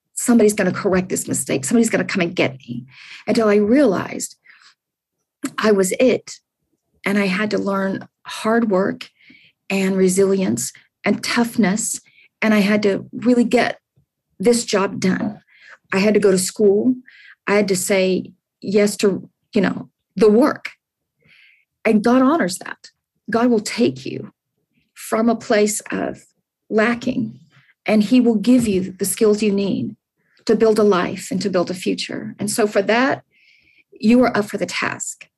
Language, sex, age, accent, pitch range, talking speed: English, female, 40-59, American, 200-235 Hz, 165 wpm